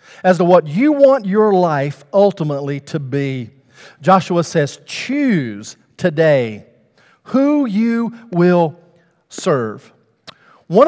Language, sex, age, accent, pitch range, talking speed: English, male, 50-69, American, 135-190 Hz, 105 wpm